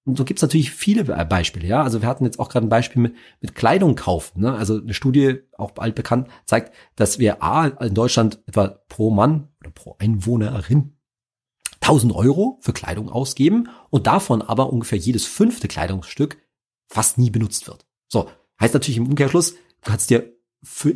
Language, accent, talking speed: German, German, 185 wpm